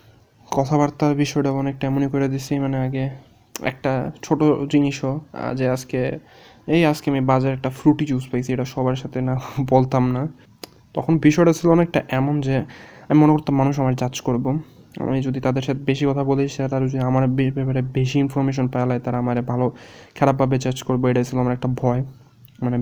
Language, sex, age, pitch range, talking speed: Bengali, male, 20-39, 125-140 Hz, 130 wpm